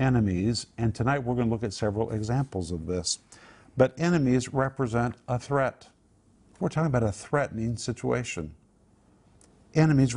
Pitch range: 115-140 Hz